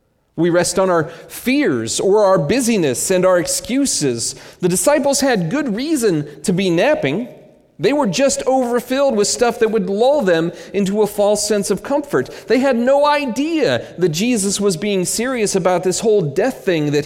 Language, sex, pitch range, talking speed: English, male, 125-185 Hz, 175 wpm